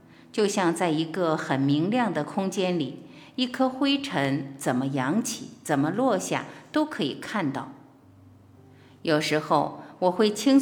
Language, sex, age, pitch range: Chinese, female, 50-69, 150-215 Hz